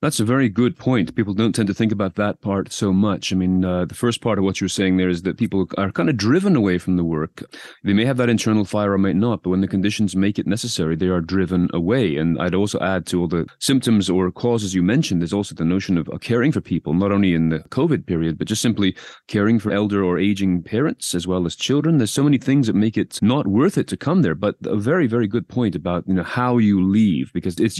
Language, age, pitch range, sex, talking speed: English, 30-49, 95-125 Hz, male, 265 wpm